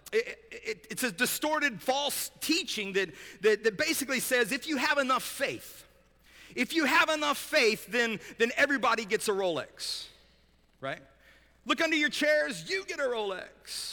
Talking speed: 150 wpm